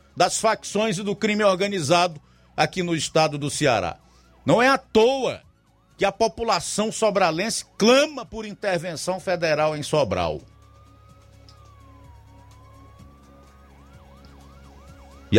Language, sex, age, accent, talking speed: Portuguese, male, 50-69, Brazilian, 100 wpm